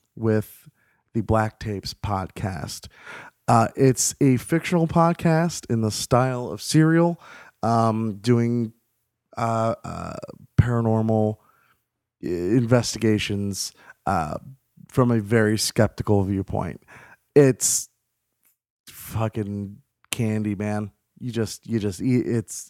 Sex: male